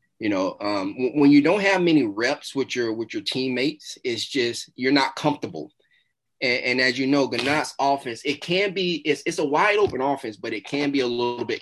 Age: 30-49